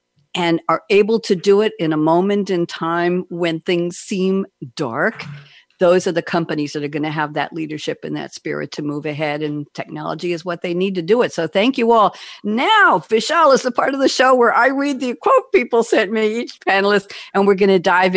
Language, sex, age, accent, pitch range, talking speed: English, female, 50-69, American, 160-215 Hz, 220 wpm